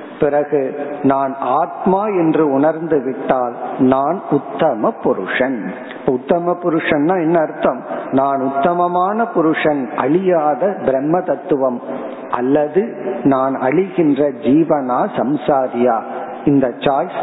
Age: 50-69